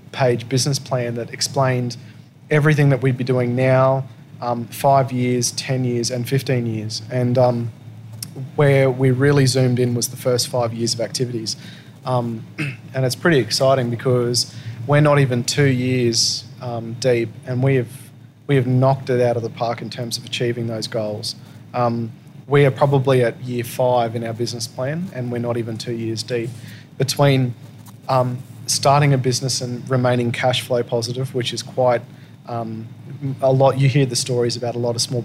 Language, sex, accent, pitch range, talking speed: English, male, Australian, 120-135 Hz, 180 wpm